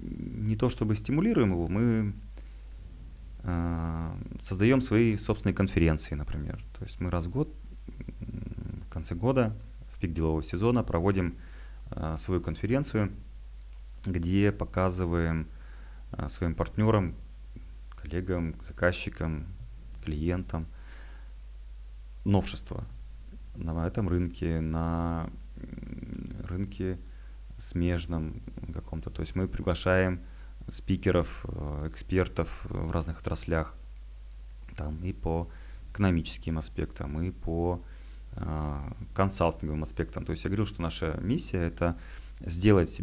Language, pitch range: Russian, 80-100 Hz